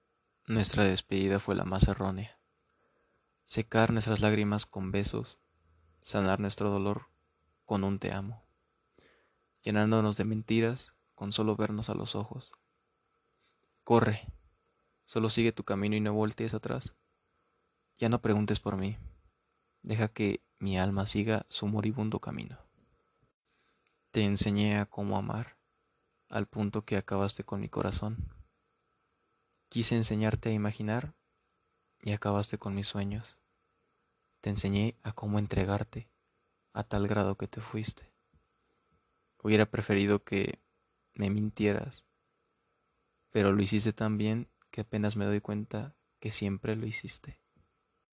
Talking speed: 125 wpm